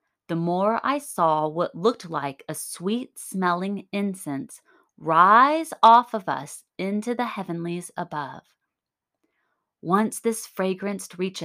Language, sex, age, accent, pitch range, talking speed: English, female, 30-49, American, 170-220 Hz, 115 wpm